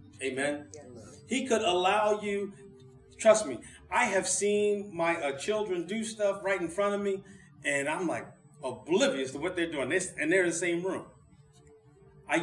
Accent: American